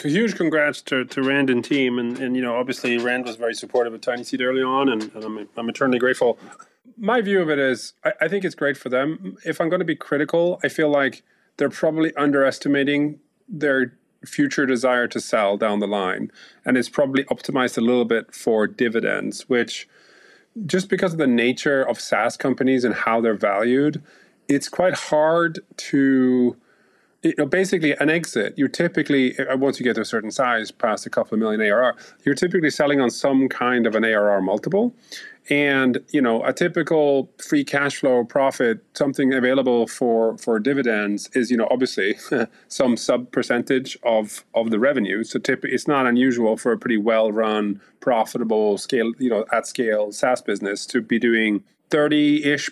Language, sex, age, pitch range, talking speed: English, male, 30-49, 120-150 Hz, 185 wpm